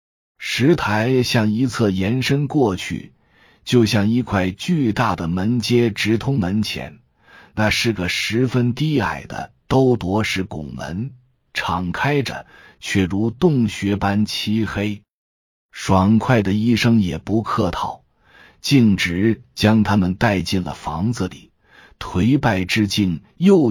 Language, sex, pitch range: Chinese, male, 95-125 Hz